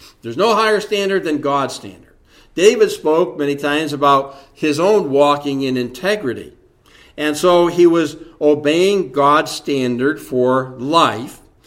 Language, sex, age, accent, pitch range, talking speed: English, male, 60-79, American, 130-165 Hz, 135 wpm